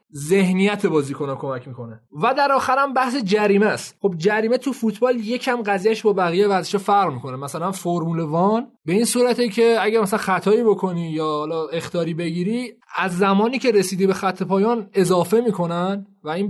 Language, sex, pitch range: Persian, male, 155-205 Hz